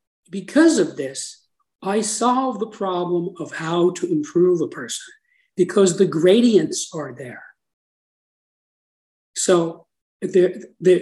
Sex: male